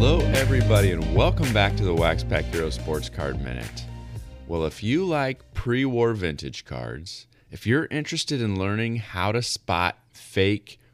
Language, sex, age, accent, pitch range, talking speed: English, male, 30-49, American, 85-115 Hz, 160 wpm